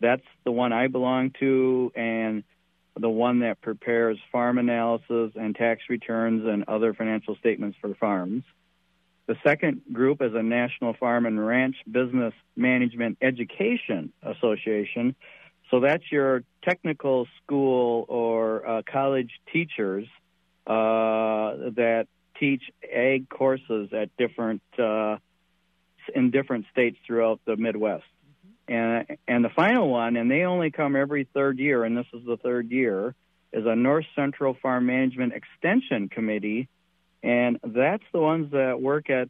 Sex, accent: male, American